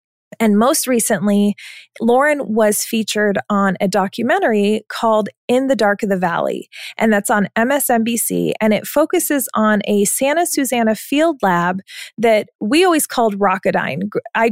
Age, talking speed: 20-39, 145 wpm